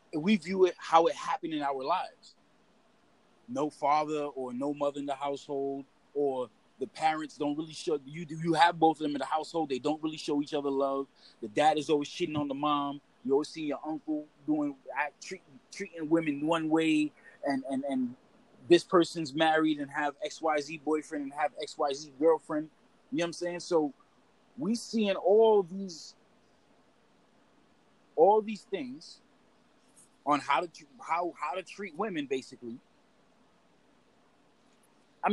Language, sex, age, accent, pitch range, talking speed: English, male, 30-49, American, 140-170 Hz, 175 wpm